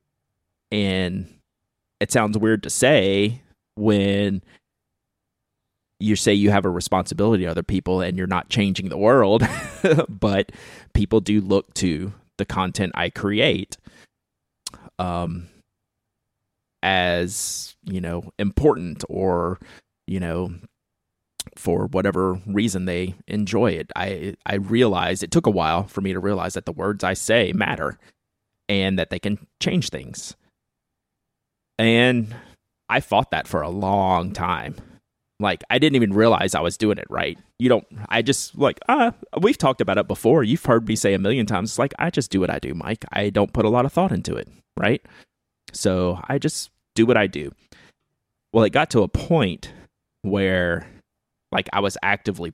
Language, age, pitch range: English, 30-49, 90-110 Hz